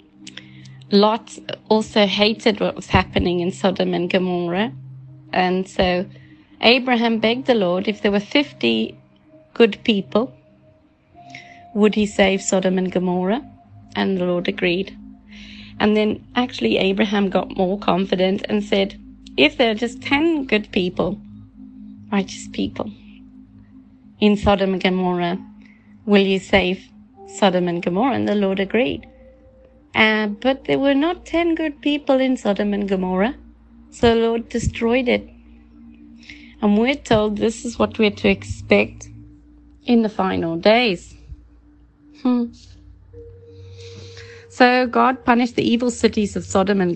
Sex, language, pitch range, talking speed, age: female, English, 170-230 Hz, 135 wpm, 30-49